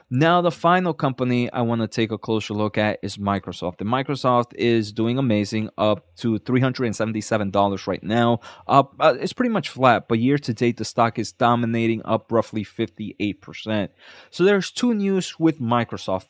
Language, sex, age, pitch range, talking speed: English, male, 20-39, 110-130 Hz, 170 wpm